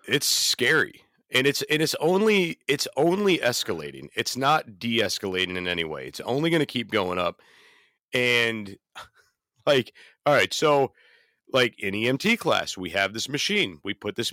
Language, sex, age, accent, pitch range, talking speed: English, male, 40-59, American, 110-155 Hz, 170 wpm